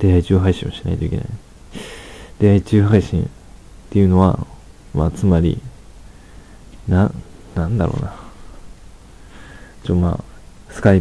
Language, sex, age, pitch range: Japanese, male, 20-39, 85-100 Hz